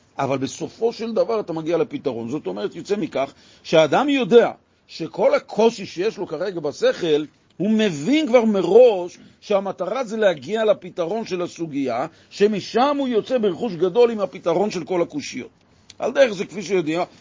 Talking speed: 155 wpm